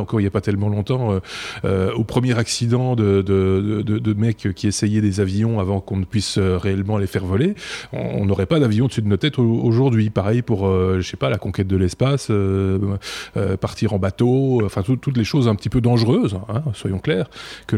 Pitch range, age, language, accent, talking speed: 100-125 Hz, 20-39, French, French, 235 wpm